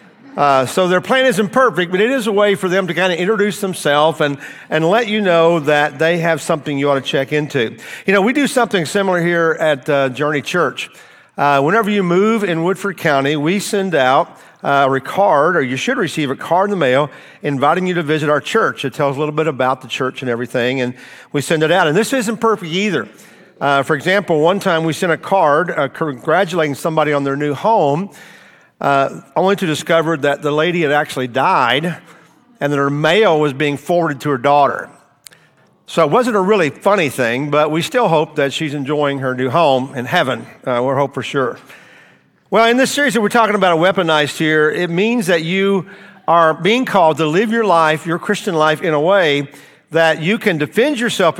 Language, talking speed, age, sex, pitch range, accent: English, 215 wpm, 50-69, male, 145-195 Hz, American